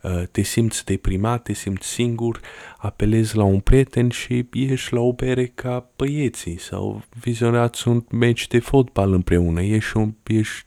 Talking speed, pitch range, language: 145 wpm, 95-120 Hz, Romanian